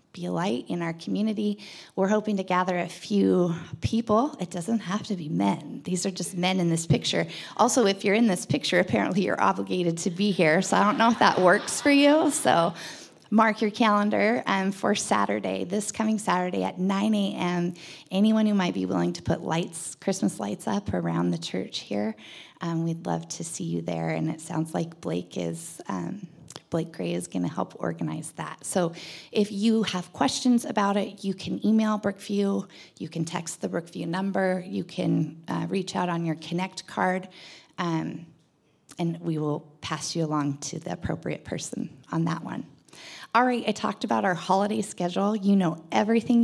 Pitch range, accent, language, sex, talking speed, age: 160-210 Hz, American, English, female, 190 wpm, 20-39